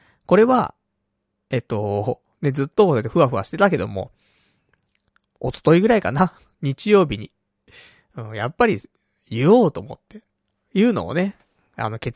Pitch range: 110-175 Hz